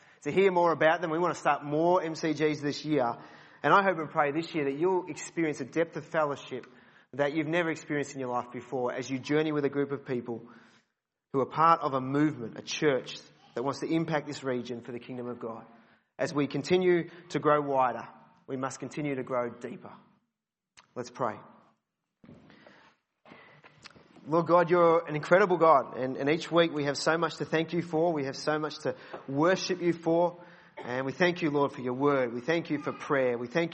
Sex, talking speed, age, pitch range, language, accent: male, 210 wpm, 30-49, 140-165 Hz, English, Australian